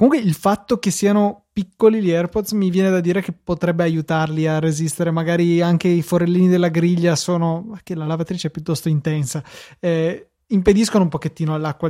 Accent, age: native, 20-39